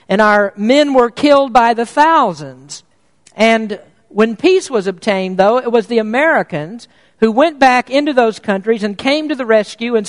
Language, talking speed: English, 180 wpm